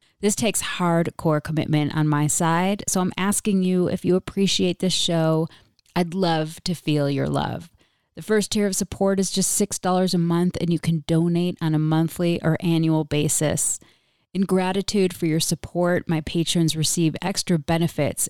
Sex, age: female, 30-49